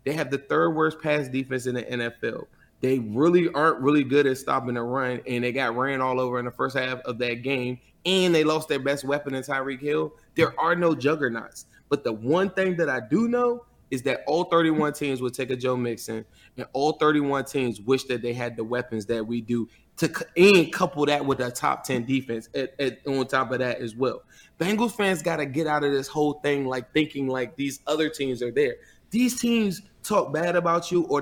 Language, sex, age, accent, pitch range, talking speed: English, male, 20-39, American, 130-165 Hz, 225 wpm